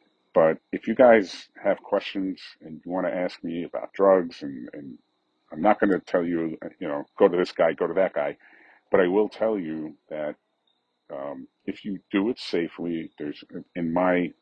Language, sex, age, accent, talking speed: English, male, 50-69, American, 195 wpm